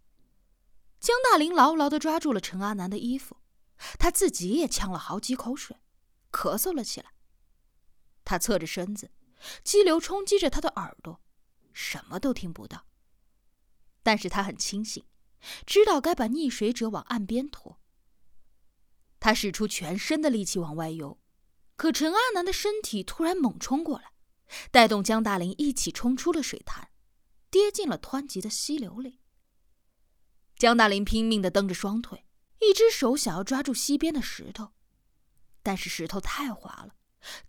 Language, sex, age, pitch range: Chinese, female, 20-39, 190-290 Hz